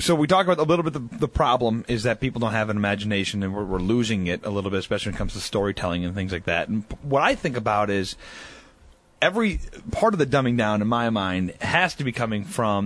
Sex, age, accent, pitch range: male, 30-49, American, 105-145 Hz